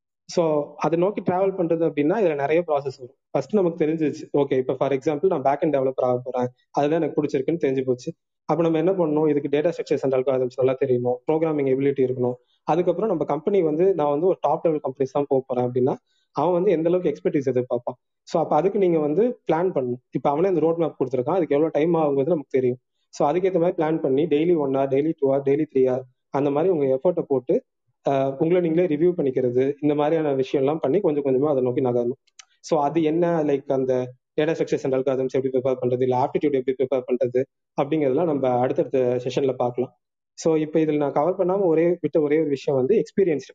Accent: native